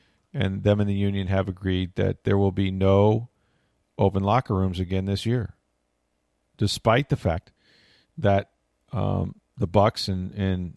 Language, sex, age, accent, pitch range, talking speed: English, male, 40-59, American, 95-110 Hz, 150 wpm